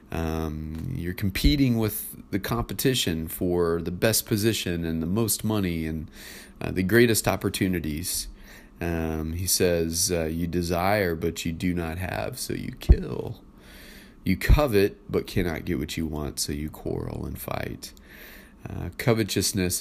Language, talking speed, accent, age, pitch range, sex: English, 145 wpm, American, 30-49, 80-100 Hz, male